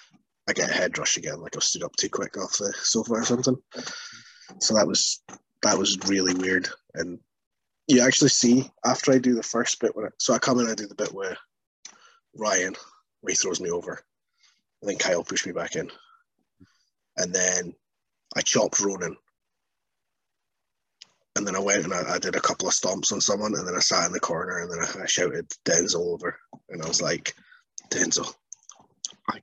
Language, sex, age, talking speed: English, male, 20-39, 200 wpm